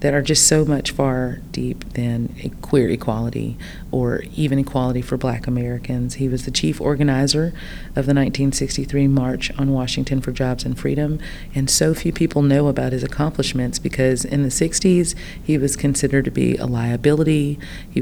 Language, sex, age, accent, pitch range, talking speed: English, female, 30-49, American, 130-145 Hz, 175 wpm